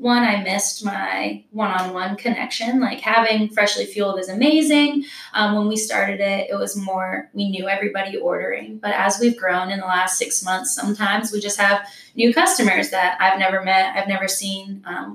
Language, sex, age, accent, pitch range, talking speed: English, female, 10-29, American, 190-230 Hz, 185 wpm